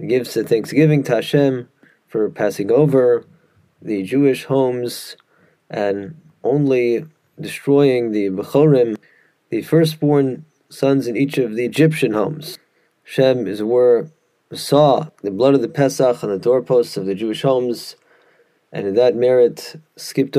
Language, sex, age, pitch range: English, male, 20-39, 120-145 Hz